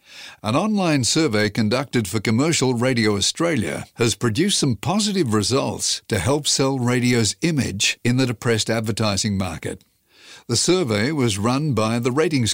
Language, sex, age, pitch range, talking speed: English, male, 50-69, 110-140 Hz, 145 wpm